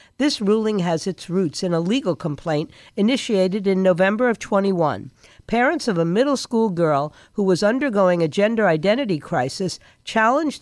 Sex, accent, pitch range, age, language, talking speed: female, American, 165-225 Hz, 50-69, English, 160 wpm